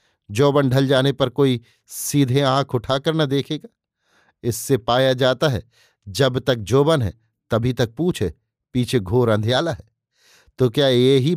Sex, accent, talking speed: male, native, 155 wpm